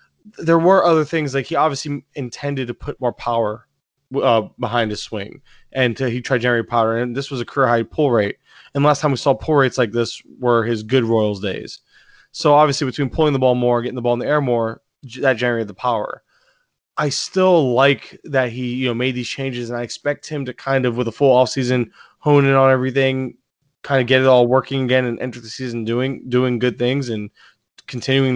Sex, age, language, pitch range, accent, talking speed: male, 20-39, English, 120-145 Hz, American, 225 wpm